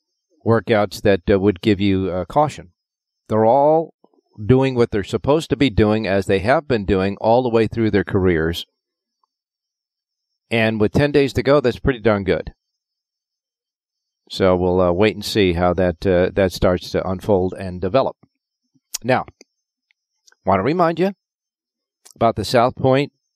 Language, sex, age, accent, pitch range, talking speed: English, male, 50-69, American, 100-130 Hz, 160 wpm